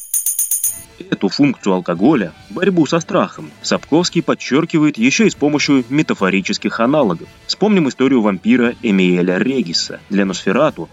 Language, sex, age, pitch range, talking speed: Russian, male, 20-39, 95-165 Hz, 115 wpm